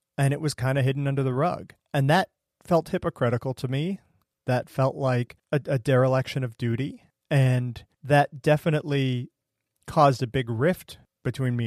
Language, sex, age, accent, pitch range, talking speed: English, male, 40-59, American, 120-145 Hz, 165 wpm